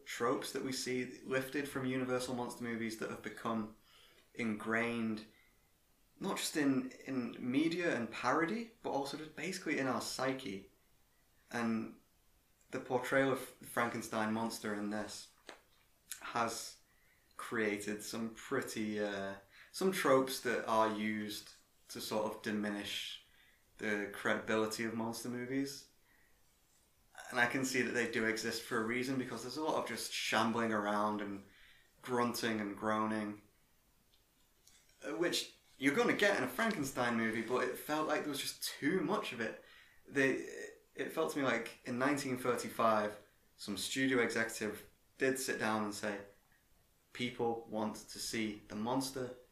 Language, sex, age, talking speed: English, male, 20-39, 145 wpm